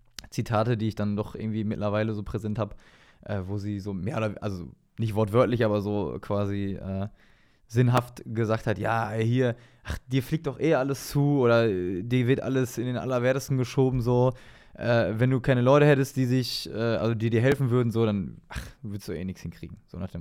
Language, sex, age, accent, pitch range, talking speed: German, male, 20-39, German, 105-130 Hz, 205 wpm